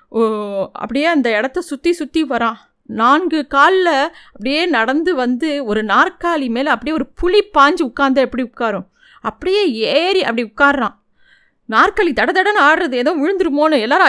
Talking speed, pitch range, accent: 135 wpm, 245-330 Hz, native